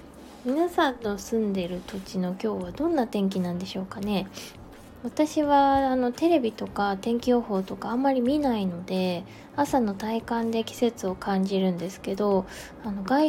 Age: 20-39